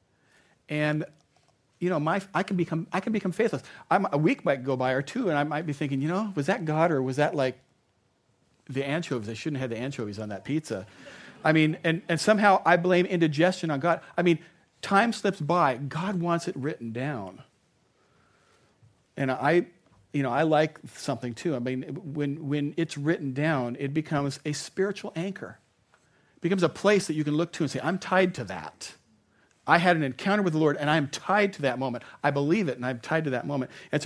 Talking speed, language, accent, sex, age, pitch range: 215 wpm, English, American, male, 40-59, 135-170 Hz